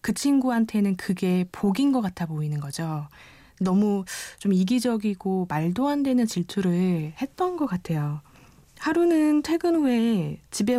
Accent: native